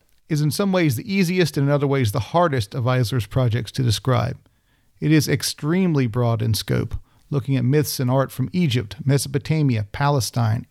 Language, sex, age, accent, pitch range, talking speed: English, male, 40-59, American, 125-150 Hz, 180 wpm